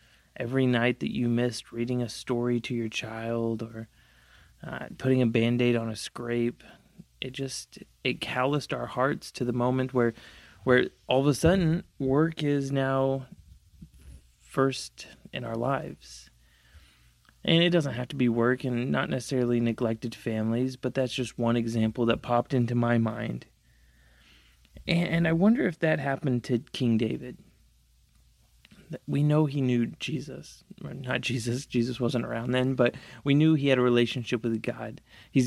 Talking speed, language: 160 wpm, English